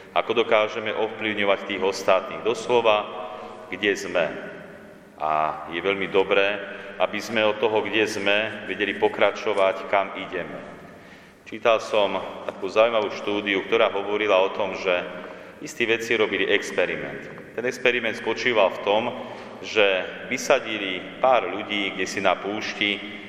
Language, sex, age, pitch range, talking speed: Slovak, male, 40-59, 95-110 Hz, 125 wpm